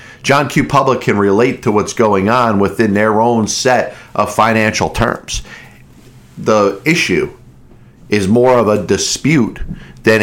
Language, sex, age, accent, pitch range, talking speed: English, male, 40-59, American, 110-125 Hz, 140 wpm